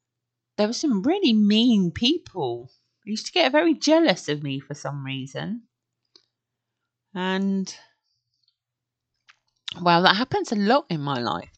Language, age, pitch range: English, 30-49, 150-210 Hz